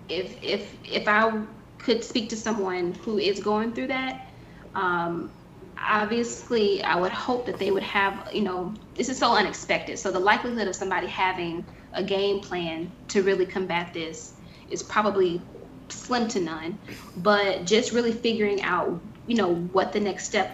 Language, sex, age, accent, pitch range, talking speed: English, female, 20-39, American, 180-210 Hz, 165 wpm